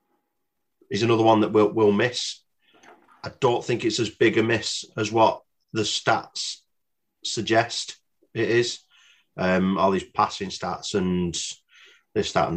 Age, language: 30-49, English